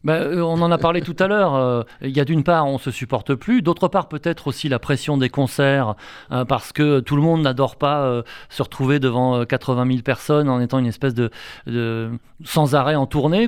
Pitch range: 125-155 Hz